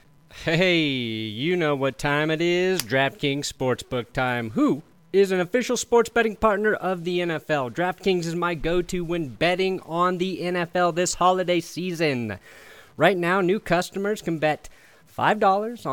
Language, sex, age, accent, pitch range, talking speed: English, male, 30-49, American, 155-205 Hz, 145 wpm